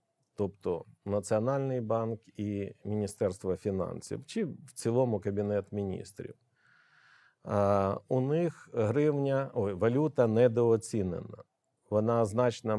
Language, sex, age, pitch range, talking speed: Ukrainian, male, 50-69, 105-135 Hz, 95 wpm